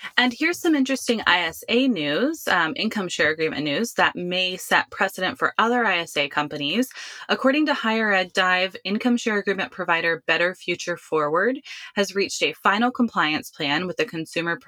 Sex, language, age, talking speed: female, English, 20-39, 165 wpm